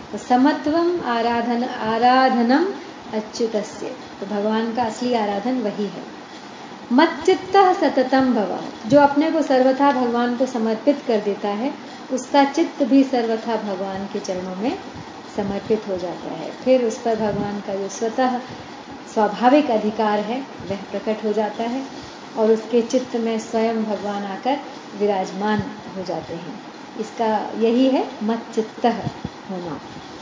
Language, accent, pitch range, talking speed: Hindi, native, 215-275 Hz, 135 wpm